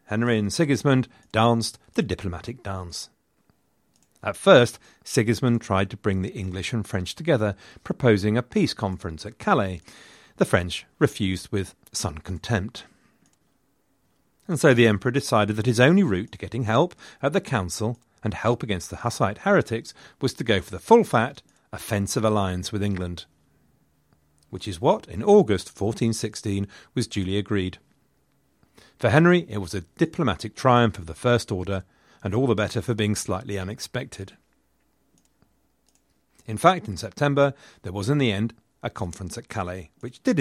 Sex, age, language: male, 40-59, English